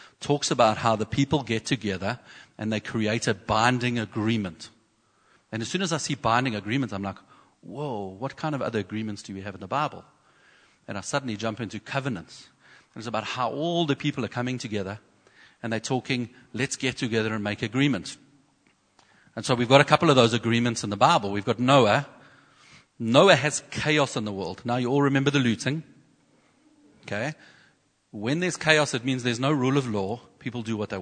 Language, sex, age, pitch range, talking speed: English, male, 40-59, 110-140 Hz, 195 wpm